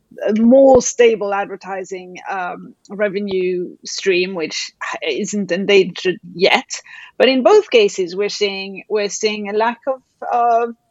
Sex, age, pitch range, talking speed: female, 30-49, 195-270 Hz, 125 wpm